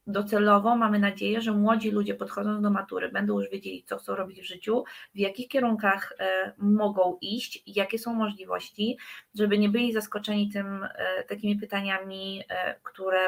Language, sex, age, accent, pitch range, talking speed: Polish, female, 20-39, native, 190-210 Hz, 165 wpm